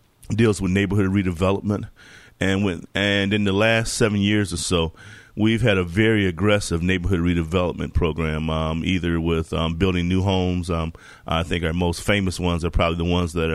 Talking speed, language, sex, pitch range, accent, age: 180 wpm, English, male, 85-100 Hz, American, 30-49